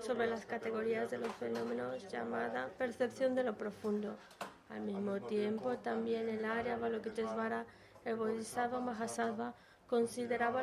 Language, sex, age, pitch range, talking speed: Spanish, female, 20-39, 220-245 Hz, 125 wpm